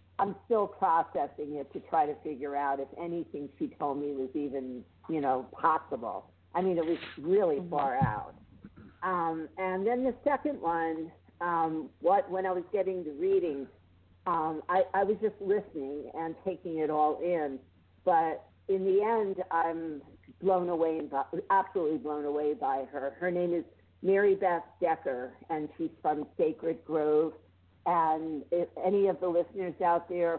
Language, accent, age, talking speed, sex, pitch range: English, American, 50-69, 165 wpm, female, 150-190 Hz